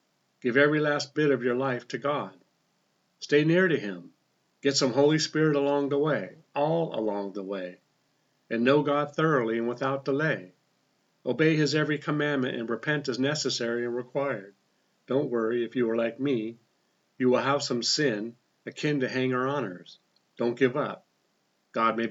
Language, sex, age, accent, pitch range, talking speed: English, male, 50-69, American, 115-145 Hz, 170 wpm